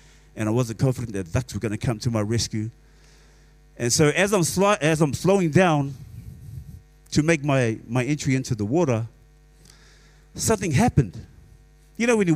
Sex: male